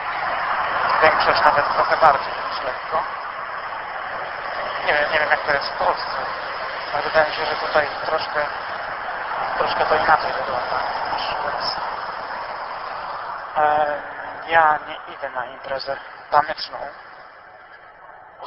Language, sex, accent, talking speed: Polish, male, native, 110 wpm